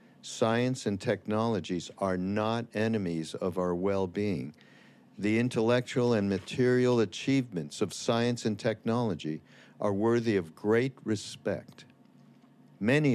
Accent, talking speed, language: American, 110 wpm, English